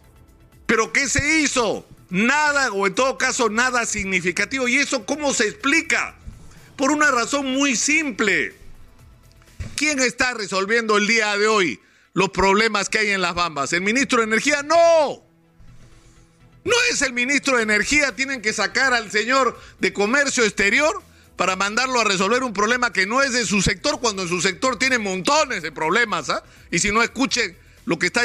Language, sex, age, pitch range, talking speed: Spanish, male, 50-69, 200-265 Hz, 175 wpm